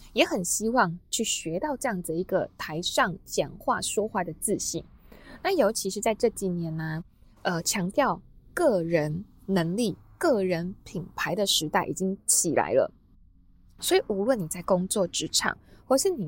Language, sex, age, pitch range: Chinese, female, 20-39, 175-255 Hz